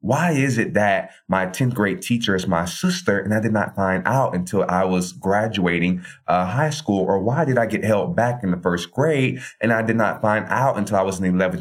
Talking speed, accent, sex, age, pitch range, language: 235 wpm, American, male, 30-49, 90-115 Hz, English